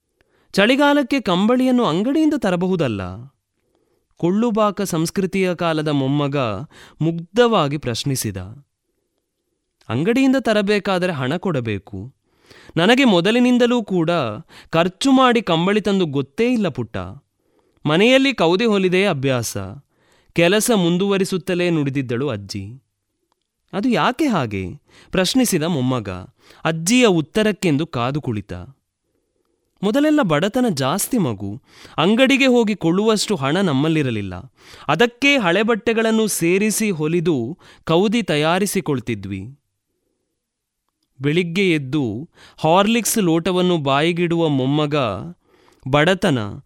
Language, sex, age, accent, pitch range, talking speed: Kannada, male, 20-39, native, 135-210 Hz, 80 wpm